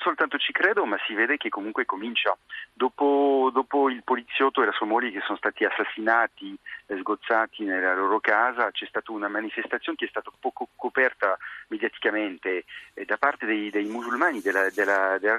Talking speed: 170 wpm